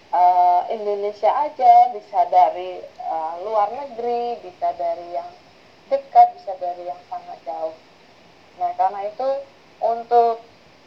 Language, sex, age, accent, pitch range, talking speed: Indonesian, female, 20-39, native, 200-250 Hz, 110 wpm